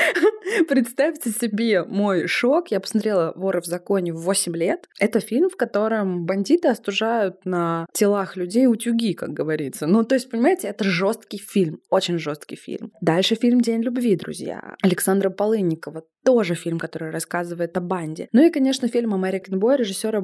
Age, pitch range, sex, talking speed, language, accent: 20-39, 180-230 Hz, female, 155 wpm, Russian, native